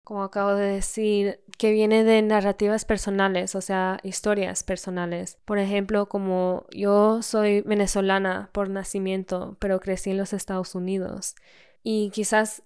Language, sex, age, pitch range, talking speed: English, female, 10-29, 190-215 Hz, 140 wpm